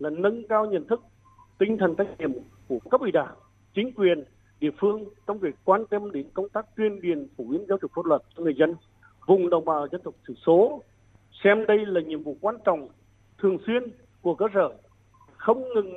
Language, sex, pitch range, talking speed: Vietnamese, male, 135-205 Hz, 210 wpm